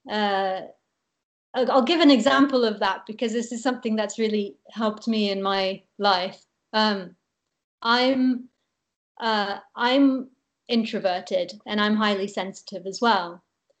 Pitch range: 195-235 Hz